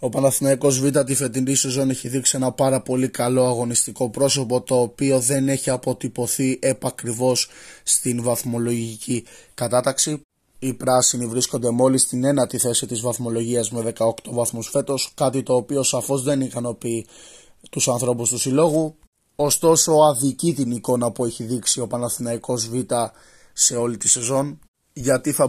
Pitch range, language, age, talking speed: 120-135 Hz, Greek, 20-39, 145 wpm